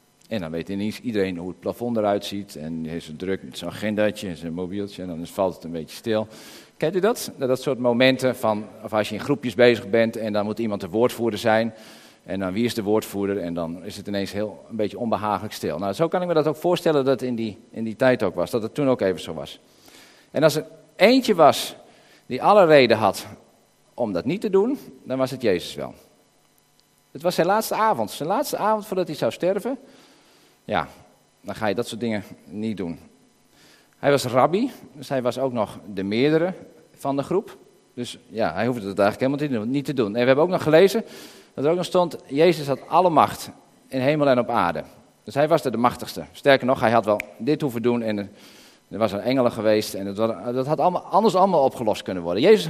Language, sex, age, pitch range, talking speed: Dutch, male, 50-69, 105-150 Hz, 230 wpm